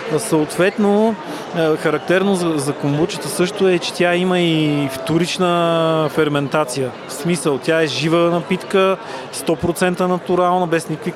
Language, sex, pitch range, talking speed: Bulgarian, male, 150-175 Hz, 125 wpm